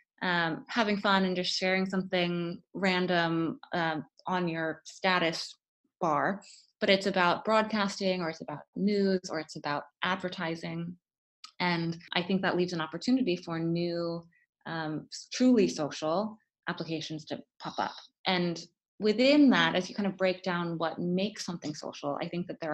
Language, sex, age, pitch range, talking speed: English, female, 20-39, 165-195 Hz, 155 wpm